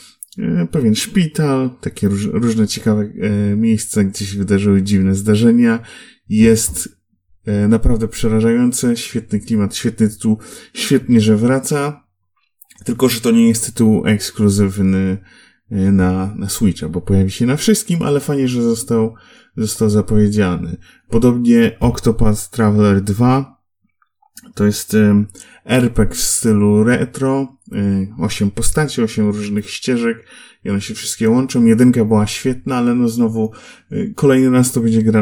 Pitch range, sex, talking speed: 105-120 Hz, male, 130 wpm